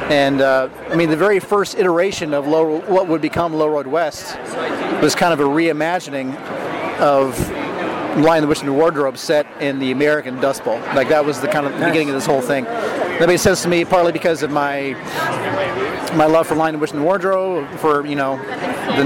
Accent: American